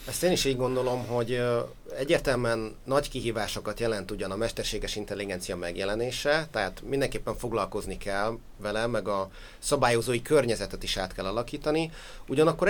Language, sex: Hungarian, male